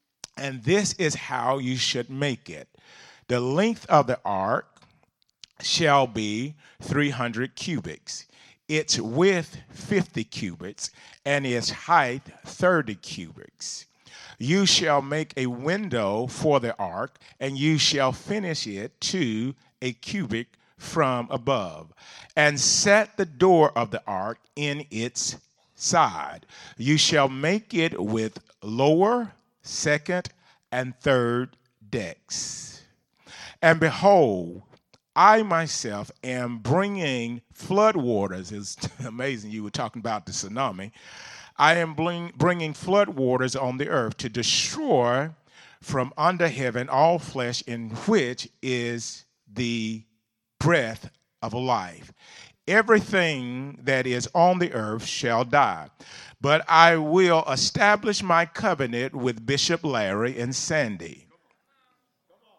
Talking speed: 115 wpm